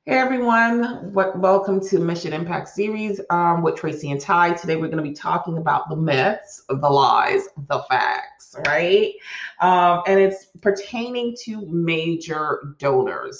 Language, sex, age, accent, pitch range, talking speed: English, female, 30-49, American, 145-195 Hz, 150 wpm